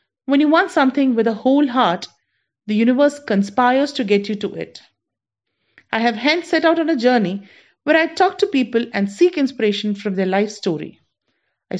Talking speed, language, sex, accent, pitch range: 190 wpm, English, female, Indian, 205-290 Hz